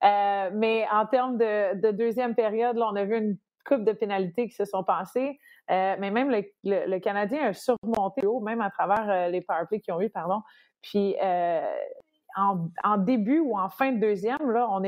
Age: 30-49